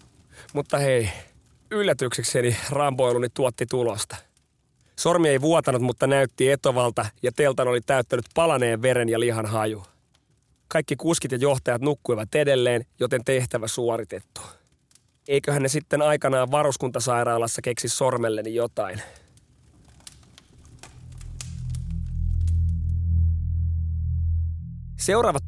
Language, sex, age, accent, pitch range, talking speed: Finnish, male, 30-49, native, 85-135 Hz, 90 wpm